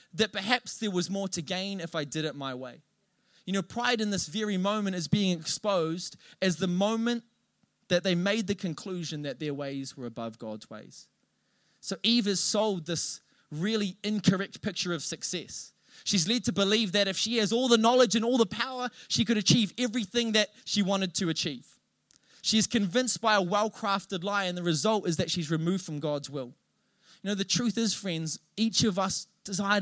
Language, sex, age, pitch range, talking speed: English, male, 20-39, 165-210 Hz, 195 wpm